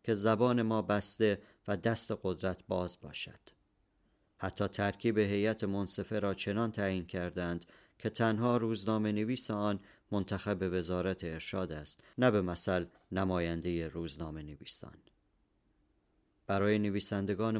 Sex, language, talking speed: male, Persian, 115 wpm